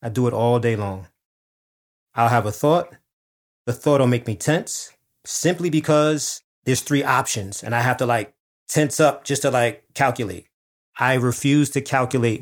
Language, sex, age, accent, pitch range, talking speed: English, male, 30-49, American, 110-140 Hz, 175 wpm